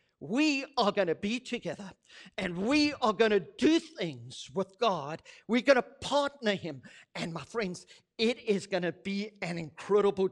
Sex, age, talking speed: male, 50-69, 175 wpm